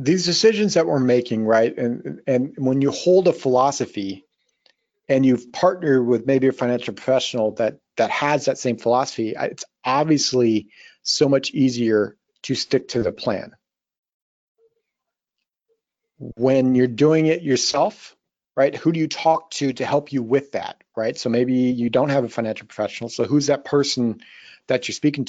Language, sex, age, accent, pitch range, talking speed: English, male, 40-59, American, 120-145 Hz, 165 wpm